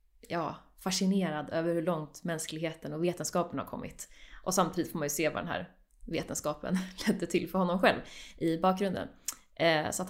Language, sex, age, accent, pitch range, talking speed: Swedish, female, 20-39, native, 170-195 Hz, 165 wpm